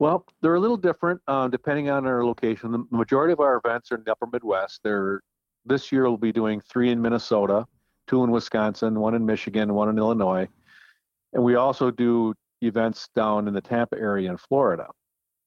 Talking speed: 190 wpm